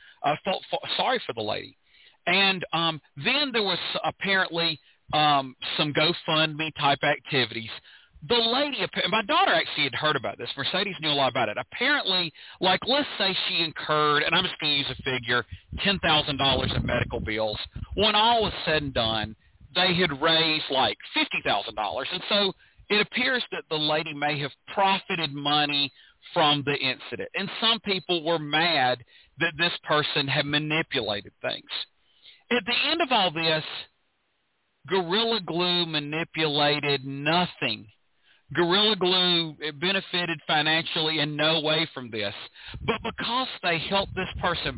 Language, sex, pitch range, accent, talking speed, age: English, male, 140-180 Hz, American, 150 wpm, 40-59